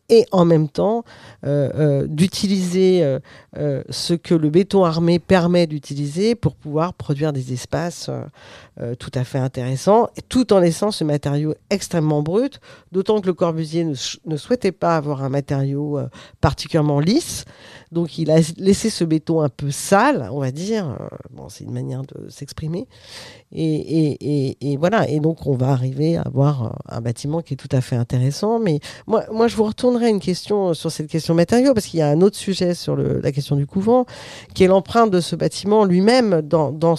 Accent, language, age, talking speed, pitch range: French, French, 50-69, 195 wpm, 140-180 Hz